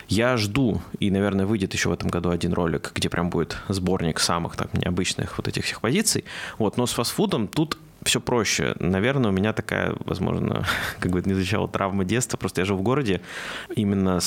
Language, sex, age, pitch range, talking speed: Russian, male, 20-39, 90-115 Hz, 195 wpm